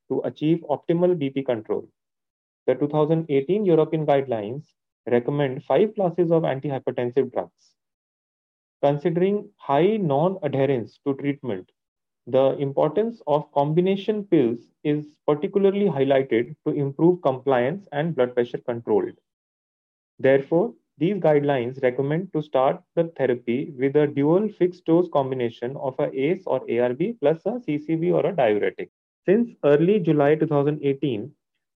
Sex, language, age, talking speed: male, English, 30-49, 120 wpm